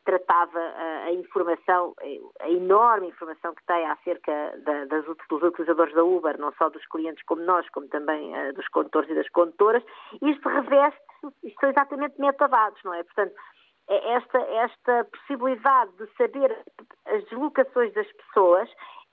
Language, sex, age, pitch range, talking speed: Portuguese, female, 50-69, 185-275 Hz, 140 wpm